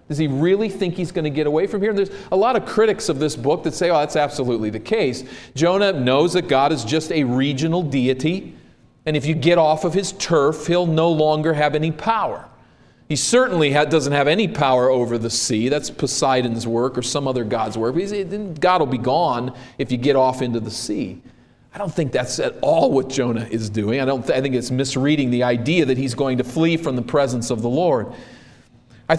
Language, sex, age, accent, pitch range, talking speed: English, male, 40-59, American, 135-195 Hz, 225 wpm